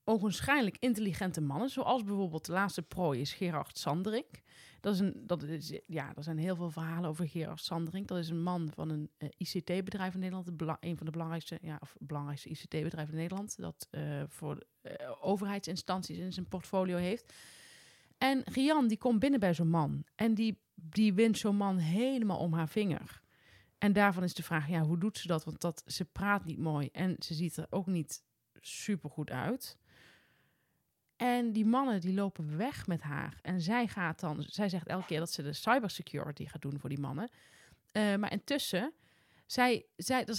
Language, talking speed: Dutch, 190 wpm